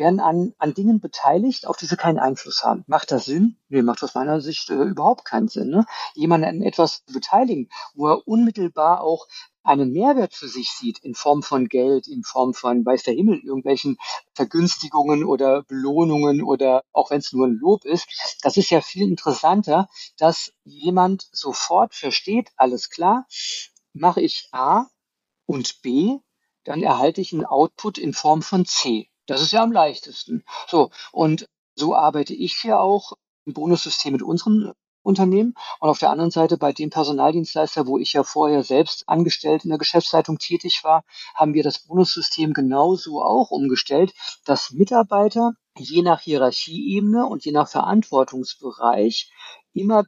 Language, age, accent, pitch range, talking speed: German, 50-69, German, 145-205 Hz, 160 wpm